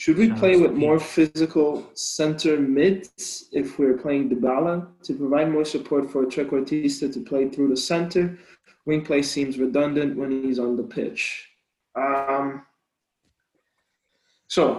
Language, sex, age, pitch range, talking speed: English, male, 20-39, 130-155 Hz, 140 wpm